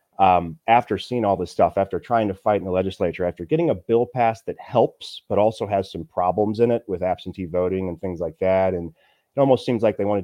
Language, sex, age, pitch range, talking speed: English, male, 30-49, 90-110 Hz, 240 wpm